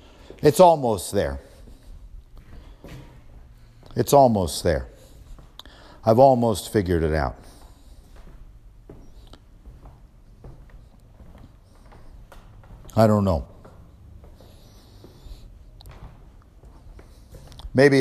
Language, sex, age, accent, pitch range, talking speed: English, male, 50-69, American, 95-120 Hz, 50 wpm